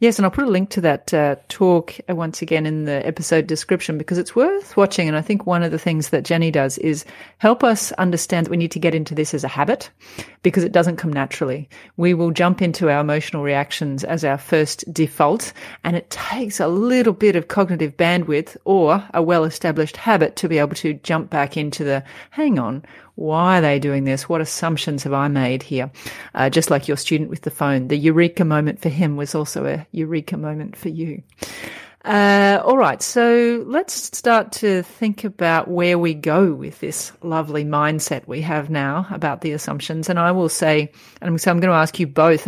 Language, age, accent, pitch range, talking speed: English, 30-49, Australian, 150-180 Hz, 210 wpm